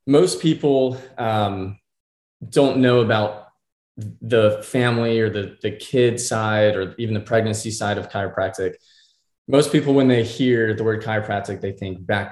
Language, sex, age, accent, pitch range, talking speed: English, male, 20-39, American, 105-120 Hz, 150 wpm